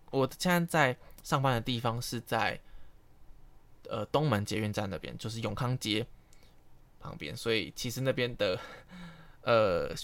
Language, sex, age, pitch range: Chinese, male, 20-39, 110-140 Hz